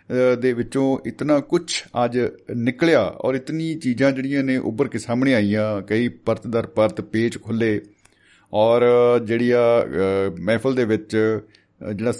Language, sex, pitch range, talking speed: Punjabi, male, 100-125 Hz, 130 wpm